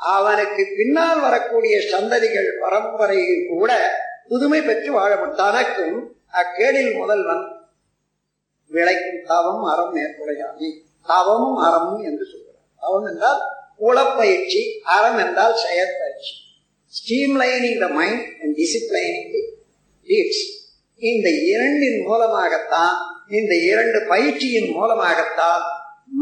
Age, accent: 50-69, native